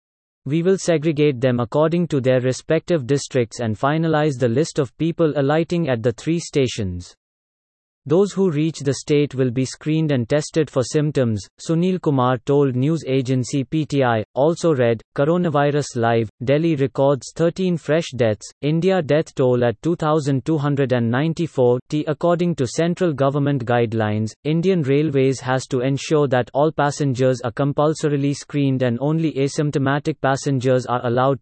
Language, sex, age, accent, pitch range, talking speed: English, male, 30-49, Indian, 130-155 Hz, 140 wpm